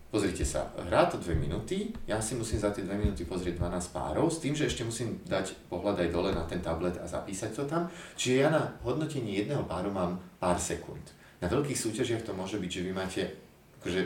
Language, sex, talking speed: Slovak, male, 220 wpm